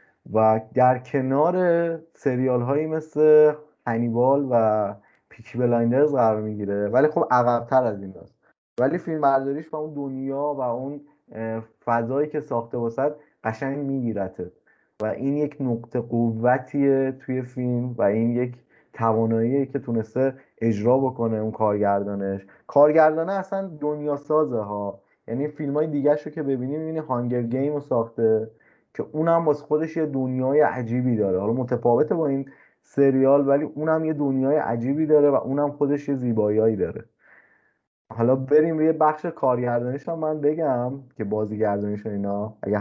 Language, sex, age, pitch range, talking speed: Persian, male, 20-39, 115-150 Hz, 145 wpm